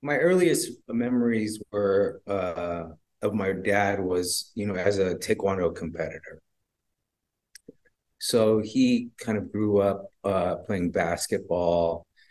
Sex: male